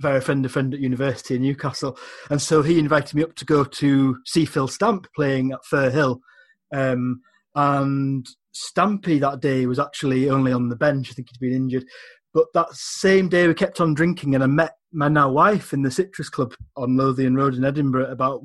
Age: 30-49